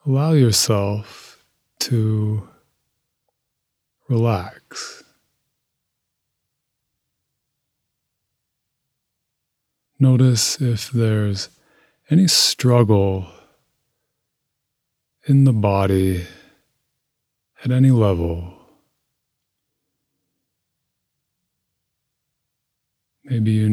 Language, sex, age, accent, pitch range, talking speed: English, male, 30-49, American, 90-120 Hz, 45 wpm